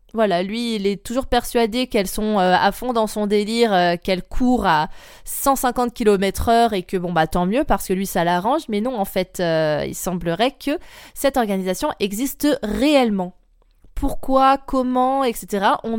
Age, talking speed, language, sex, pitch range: 20-39, 180 wpm, French, female, 195-245 Hz